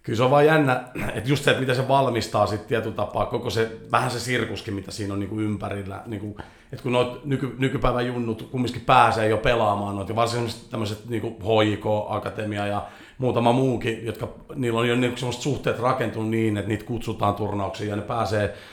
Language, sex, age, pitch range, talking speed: Finnish, male, 40-59, 105-125 Hz, 195 wpm